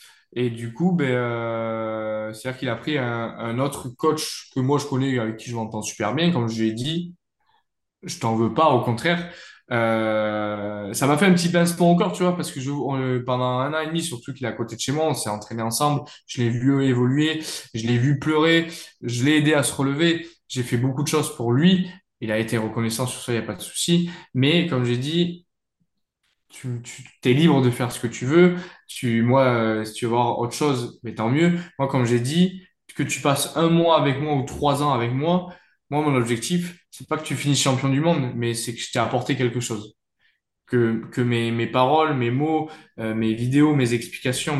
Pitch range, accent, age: 120-155 Hz, French, 20-39